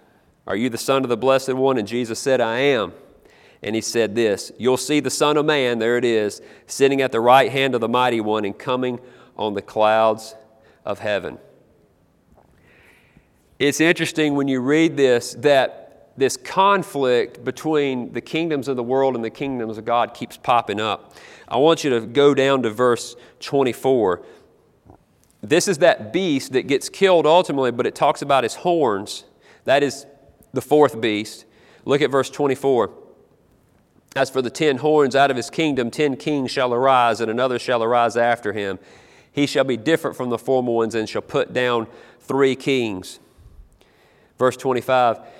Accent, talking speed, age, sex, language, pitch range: American, 175 wpm, 40-59, male, English, 120-145 Hz